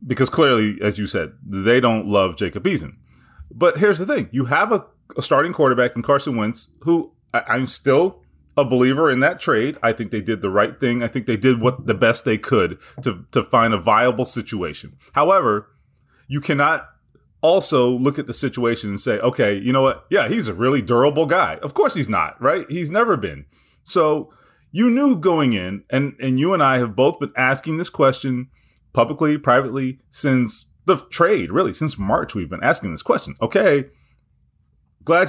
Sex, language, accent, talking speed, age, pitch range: male, English, American, 190 wpm, 30-49, 120-165 Hz